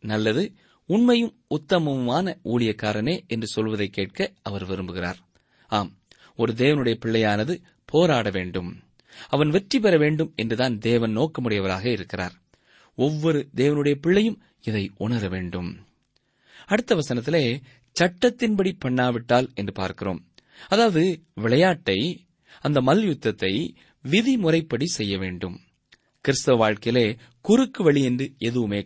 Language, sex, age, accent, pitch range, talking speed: Tamil, male, 20-39, native, 105-170 Hz, 100 wpm